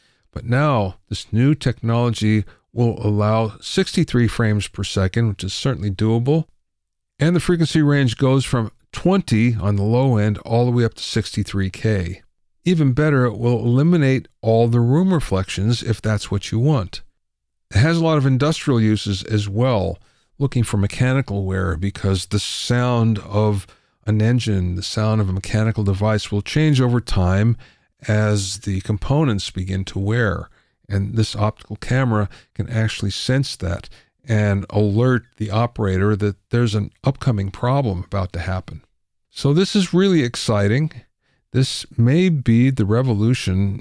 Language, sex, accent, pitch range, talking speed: English, male, American, 100-125 Hz, 150 wpm